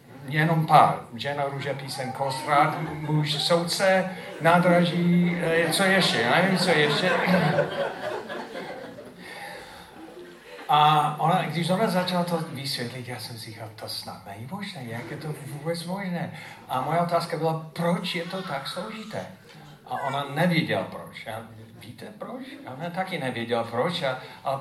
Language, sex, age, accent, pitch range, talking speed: Czech, male, 50-69, native, 125-175 Hz, 140 wpm